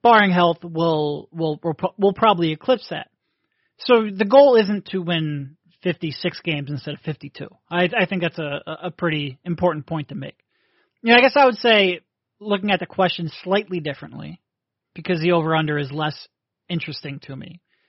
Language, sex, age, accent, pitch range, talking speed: English, male, 30-49, American, 155-190 Hz, 170 wpm